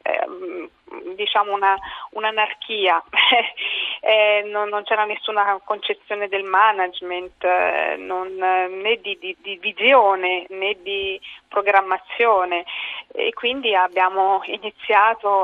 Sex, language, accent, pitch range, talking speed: female, Italian, native, 190-215 Hz, 95 wpm